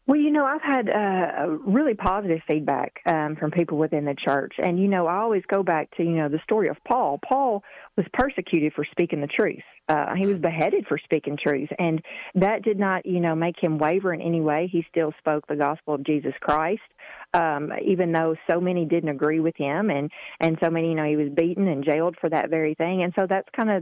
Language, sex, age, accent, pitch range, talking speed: English, female, 40-59, American, 155-195 Hz, 230 wpm